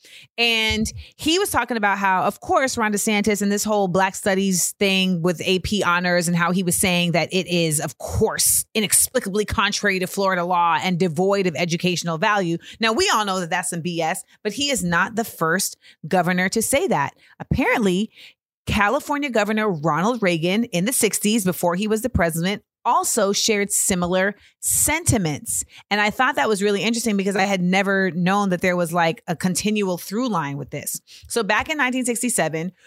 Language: English